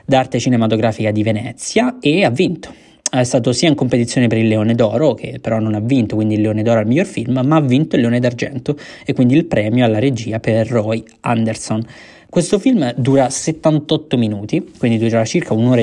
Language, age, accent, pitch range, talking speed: Italian, 20-39, native, 115-140 Hz, 205 wpm